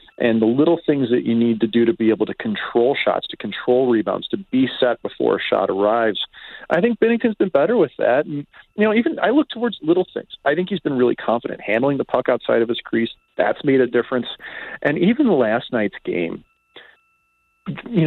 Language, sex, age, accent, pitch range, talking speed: English, male, 40-59, American, 110-170 Hz, 215 wpm